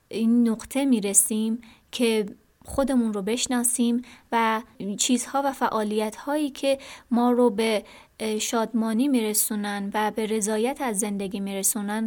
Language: Persian